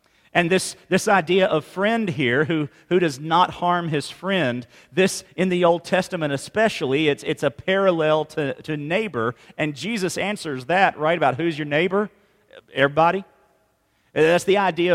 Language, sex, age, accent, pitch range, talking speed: English, male, 40-59, American, 145-190 Hz, 160 wpm